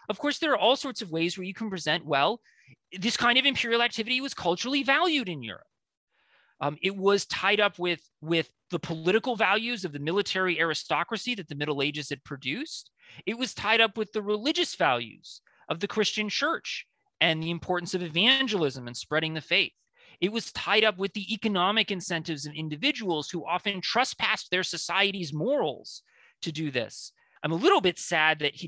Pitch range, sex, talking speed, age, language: 155-225 Hz, male, 190 wpm, 30-49, English